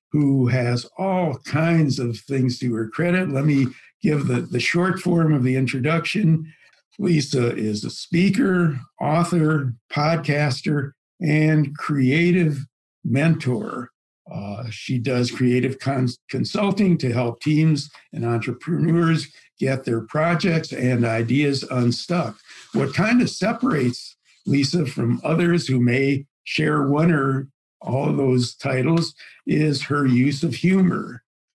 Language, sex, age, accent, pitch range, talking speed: English, male, 60-79, American, 125-165 Hz, 125 wpm